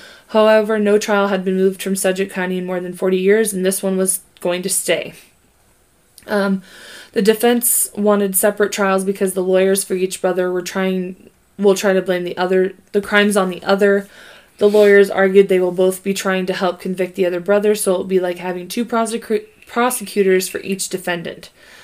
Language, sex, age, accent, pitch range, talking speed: English, female, 20-39, American, 190-210 Hz, 200 wpm